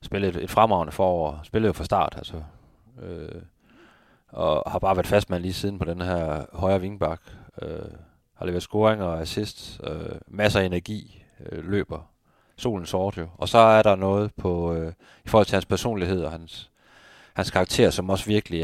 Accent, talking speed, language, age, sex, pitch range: native, 185 wpm, Danish, 30-49, male, 85-95 Hz